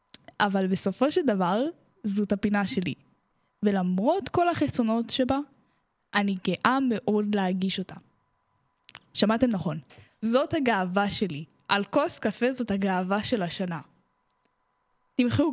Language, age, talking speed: Hebrew, 10-29, 110 wpm